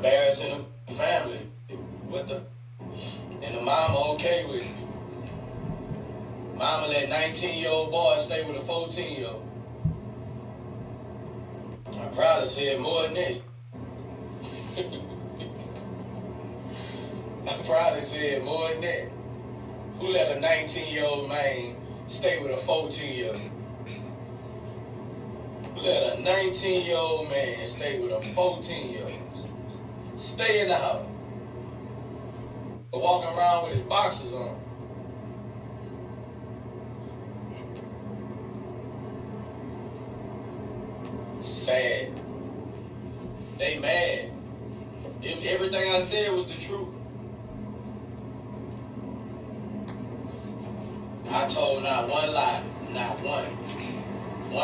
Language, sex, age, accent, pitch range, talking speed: English, male, 20-39, American, 120-150 Hz, 95 wpm